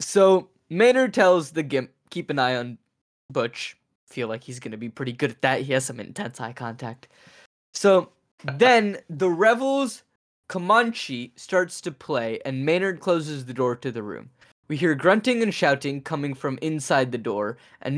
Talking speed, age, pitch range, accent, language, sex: 175 wpm, 10-29, 125-175 Hz, American, English, male